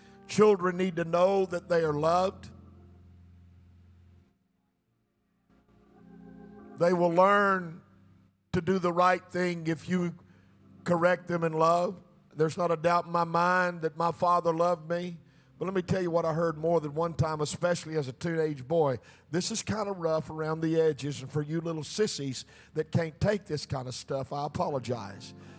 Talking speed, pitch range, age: 170 wpm, 130-175 Hz, 50-69